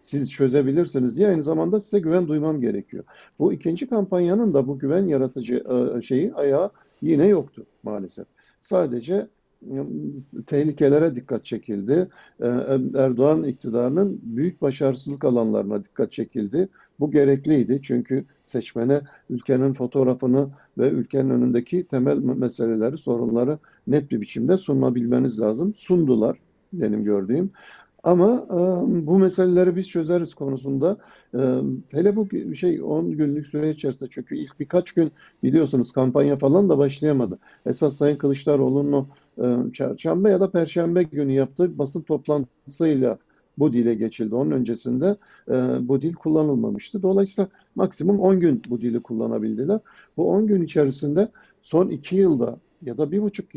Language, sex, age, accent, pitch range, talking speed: Turkish, male, 50-69, native, 125-180 Hz, 130 wpm